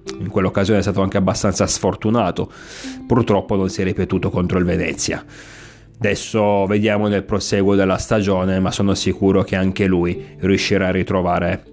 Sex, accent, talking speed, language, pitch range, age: male, native, 155 wpm, Italian, 95-110 Hz, 30-49